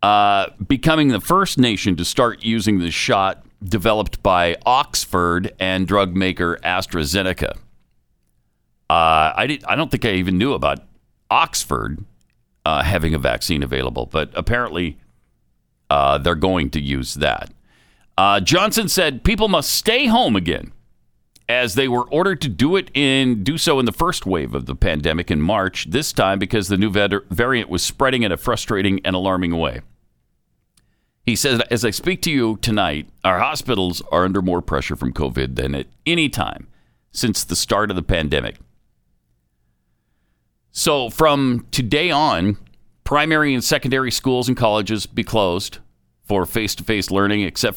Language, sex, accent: English, male, American